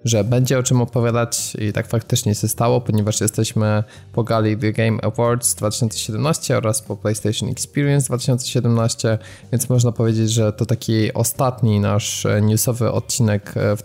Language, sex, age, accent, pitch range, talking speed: Polish, male, 20-39, native, 105-125 Hz, 145 wpm